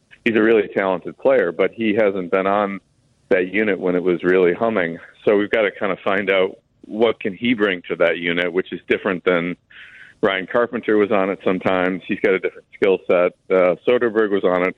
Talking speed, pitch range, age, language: 215 wpm, 90-115 Hz, 50-69, English